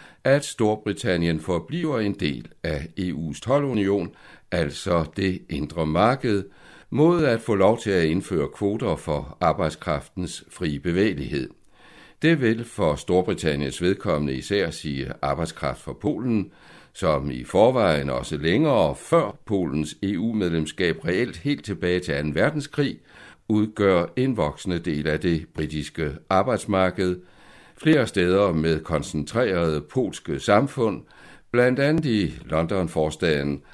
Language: Danish